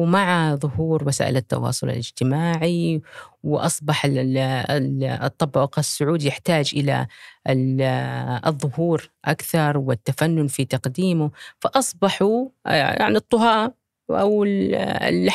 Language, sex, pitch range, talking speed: Arabic, female, 140-185 Hz, 80 wpm